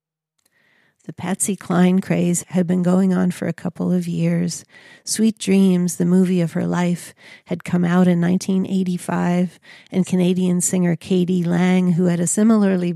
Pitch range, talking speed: 170-185 Hz, 155 wpm